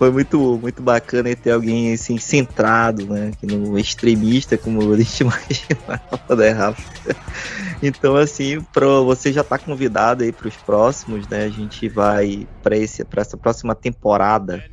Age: 20-39